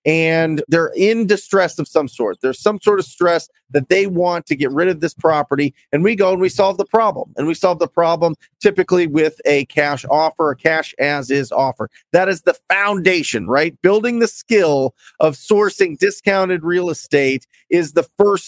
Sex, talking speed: male, 195 wpm